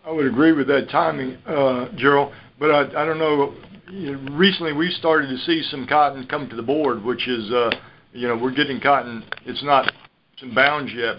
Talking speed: 205 wpm